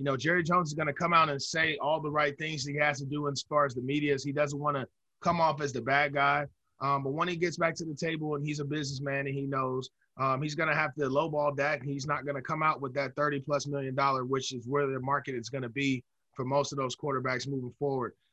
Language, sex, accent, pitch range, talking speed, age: English, male, American, 130-150 Hz, 275 wpm, 20-39